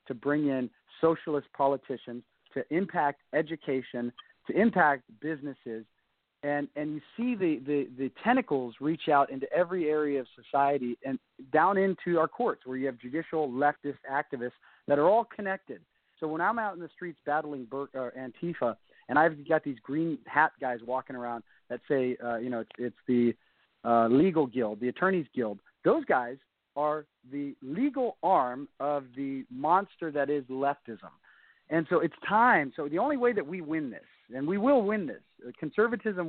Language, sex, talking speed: English, male, 170 wpm